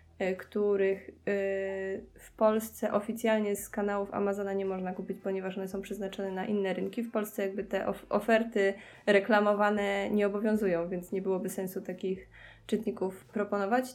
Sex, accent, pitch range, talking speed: female, native, 195-220 Hz, 140 wpm